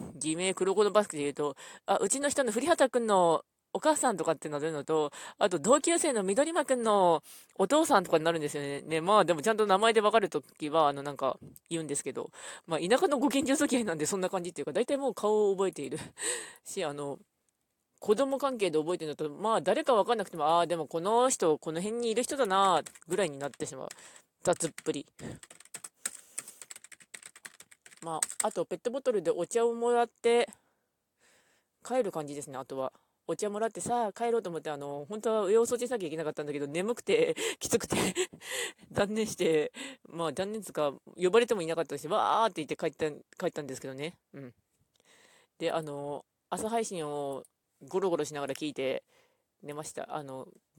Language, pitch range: Japanese, 155-235 Hz